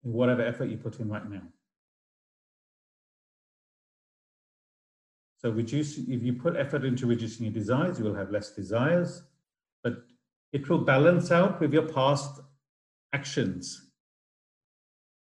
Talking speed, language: 120 wpm, English